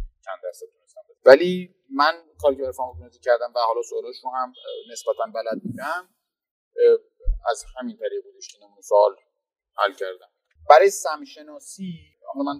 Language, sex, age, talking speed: Persian, male, 30-49, 110 wpm